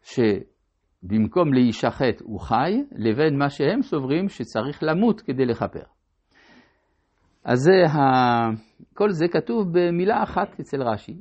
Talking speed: 120 wpm